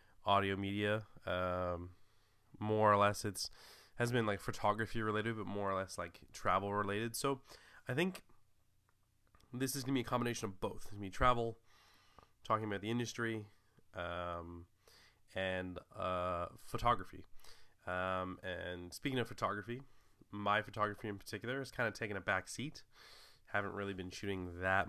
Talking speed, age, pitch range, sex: 150 wpm, 20-39, 95-115 Hz, male